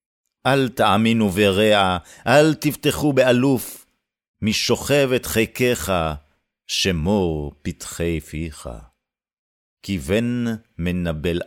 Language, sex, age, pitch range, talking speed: Hebrew, male, 50-69, 85-115 Hz, 80 wpm